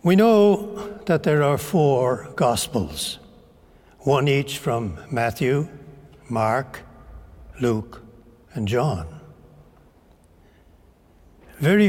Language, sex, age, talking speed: English, male, 60-79, 80 wpm